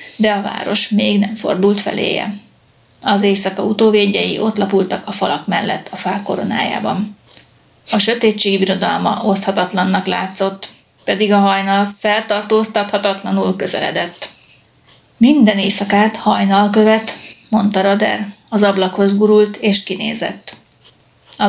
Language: Hungarian